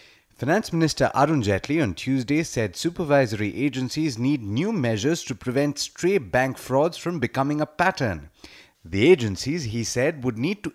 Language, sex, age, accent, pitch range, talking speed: English, male, 30-49, Indian, 110-145 Hz, 150 wpm